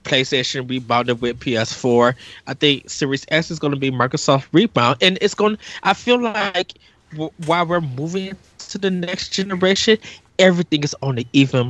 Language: English